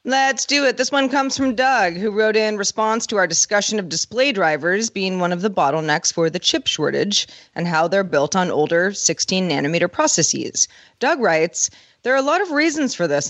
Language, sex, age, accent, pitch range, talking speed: English, female, 30-49, American, 170-230 Hz, 210 wpm